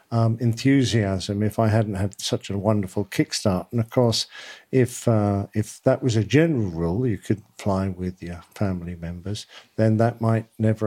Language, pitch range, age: English, 105-125 Hz, 50-69